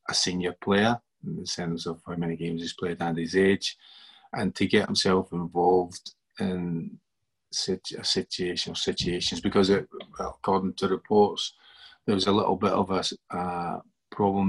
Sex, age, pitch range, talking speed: male, 30-49, 95-105 Hz, 165 wpm